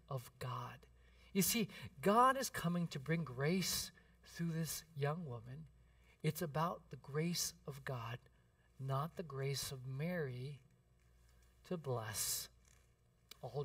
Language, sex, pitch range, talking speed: English, male, 135-170 Hz, 125 wpm